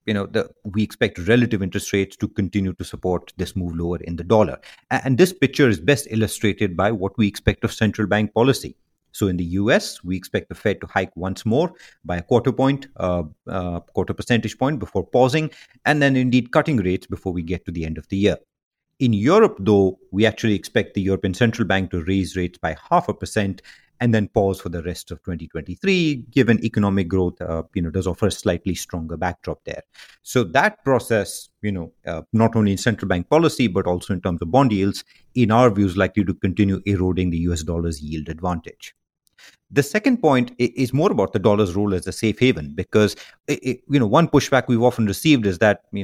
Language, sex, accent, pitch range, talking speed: English, male, Indian, 90-115 Hz, 210 wpm